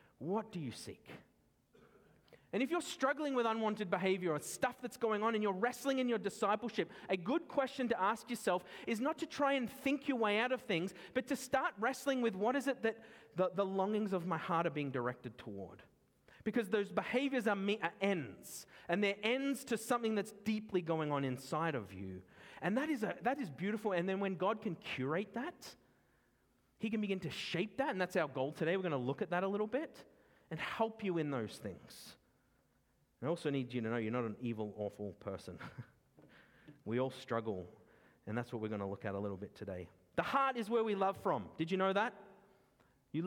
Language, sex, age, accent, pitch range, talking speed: English, male, 30-49, Australian, 150-240 Hz, 215 wpm